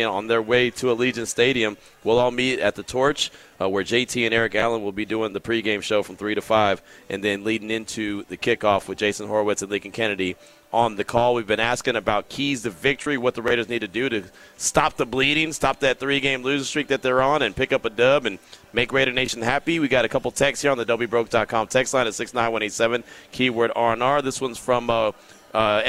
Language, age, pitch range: English, 30-49, 115-140 Hz